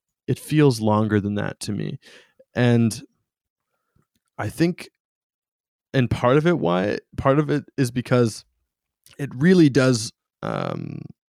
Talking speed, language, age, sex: 130 wpm, English, 20-39, male